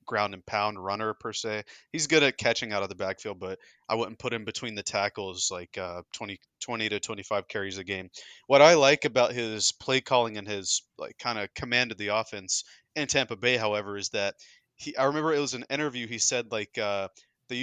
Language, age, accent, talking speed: English, 20-39, American, 225 wpm